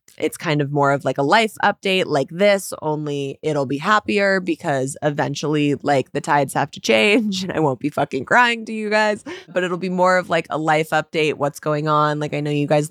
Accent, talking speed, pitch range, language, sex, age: American, 230 wpm, 145-165 Hz, English, female, 20-39